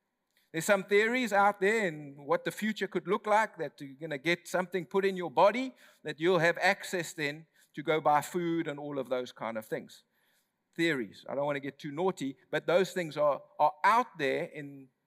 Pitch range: 165-215 Hz